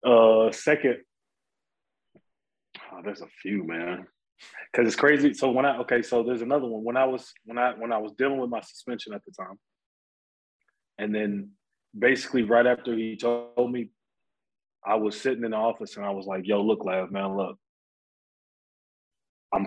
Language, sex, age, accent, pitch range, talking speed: English, male, 20-39, American, 100-125 Hz, 175 wpm